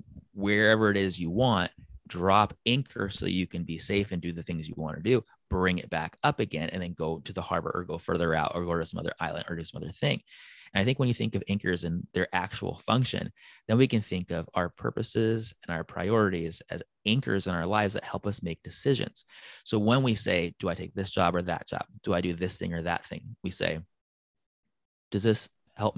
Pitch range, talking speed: 85-110 Hz, 240 wpm